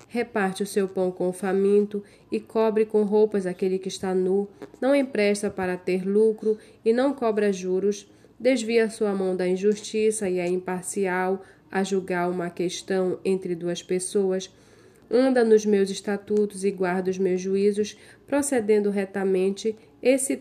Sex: female